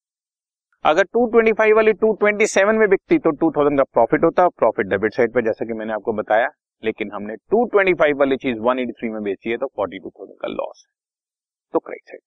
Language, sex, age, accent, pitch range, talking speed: Hindi, male, 30-49, native, 110-180 Hz, 170 wpm